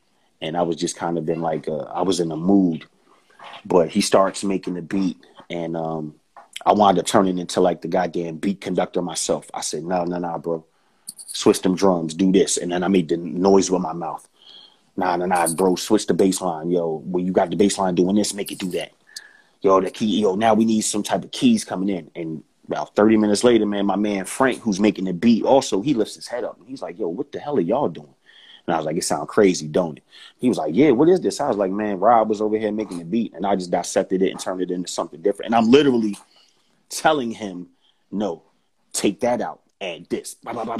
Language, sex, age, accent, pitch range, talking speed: English, male, 30-49, American, 90-110 Hz, 250 wpm